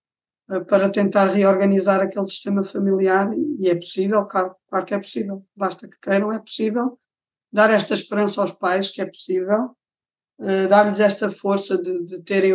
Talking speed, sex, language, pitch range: 165 wpm, female, Portuguese, 190-225 Hz